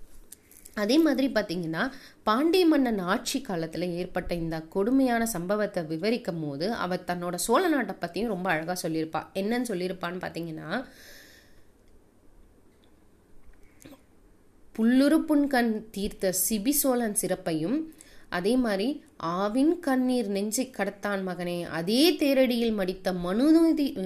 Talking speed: 100 wpm